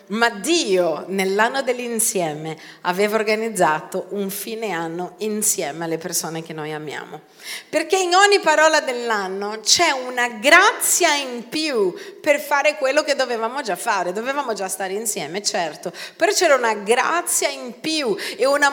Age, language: 40-59, Italian